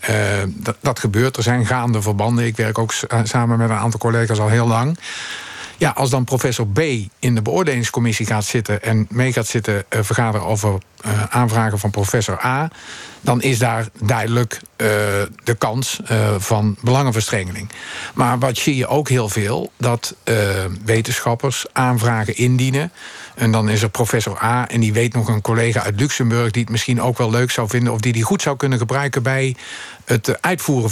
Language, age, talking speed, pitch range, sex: Dutch, 50-69, 185 wpm, 110-125 Hz, male